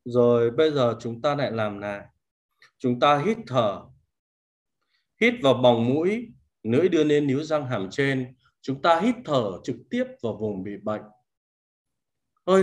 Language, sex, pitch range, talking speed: Vietnamese, male, 115-170 Hz, 160 wpm